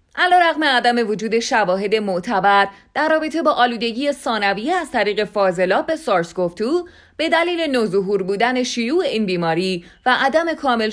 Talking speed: 150 wpm